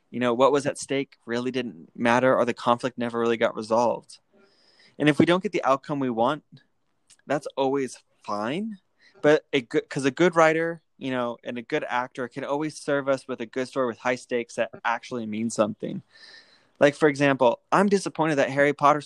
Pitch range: 125-155 Hz